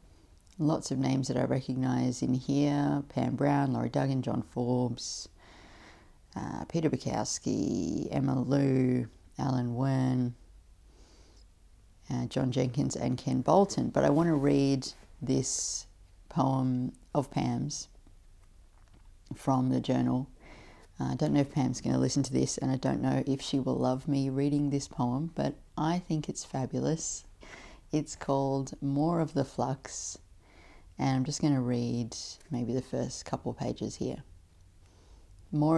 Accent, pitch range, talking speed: Australian, 85-140 Hz, 145 wpm